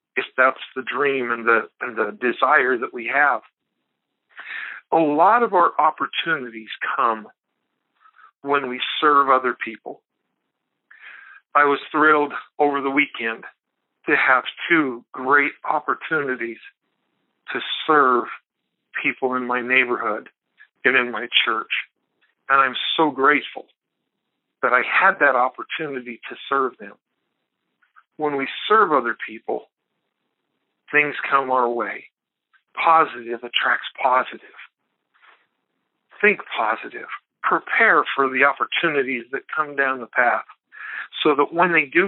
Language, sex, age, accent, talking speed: English, male, 50-69, American, 120 wpm